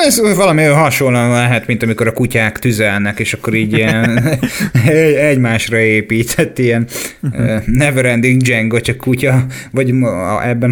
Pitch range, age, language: 110-130 Hz, 20-39, Hungarian